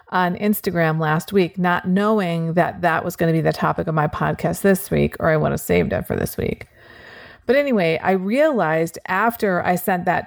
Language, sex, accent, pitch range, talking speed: English, female, American, 170-210 Hz, 210 wpm